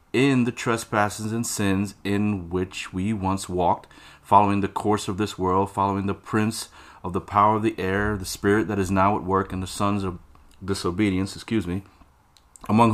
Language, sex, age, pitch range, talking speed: English, male, 30-49, 90-110 Hz, 185 wpm